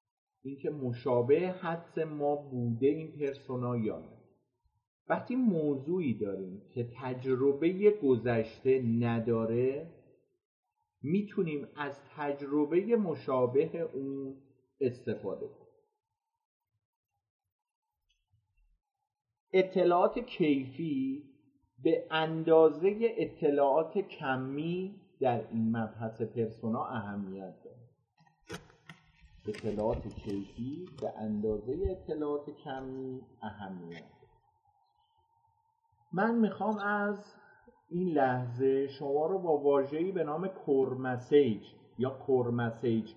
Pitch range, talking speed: 125-190 Hz, 75 wpm